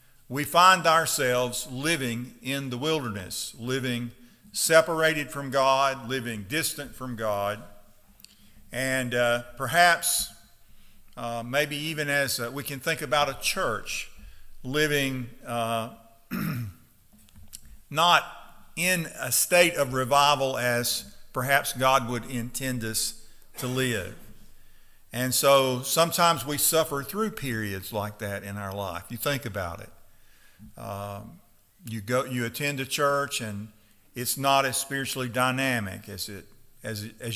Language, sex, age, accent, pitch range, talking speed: English, male, 50-69, American, 110-140 Hz, 130 wpm